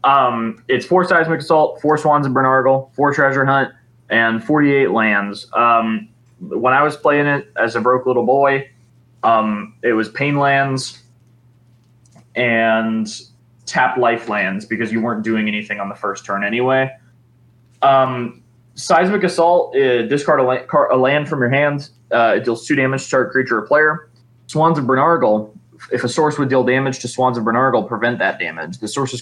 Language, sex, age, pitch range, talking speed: English, male, 20-39, 115-135 Hz, 175 wpm